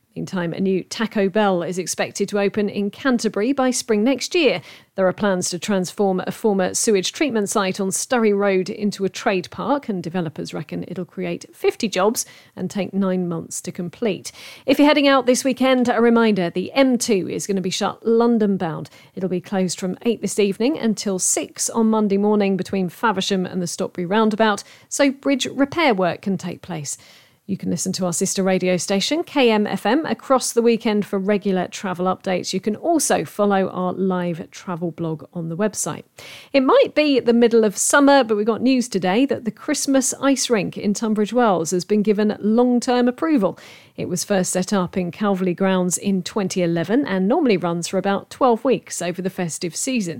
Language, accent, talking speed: English, British, 190 wpm